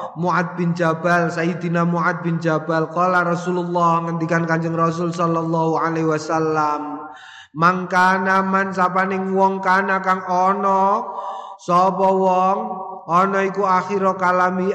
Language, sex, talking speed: Indonesian, male, 105 wpm